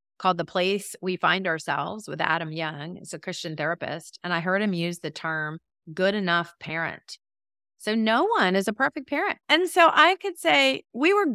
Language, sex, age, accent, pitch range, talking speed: English, female, 30-49, American, 165-265 Hz, 195 wpm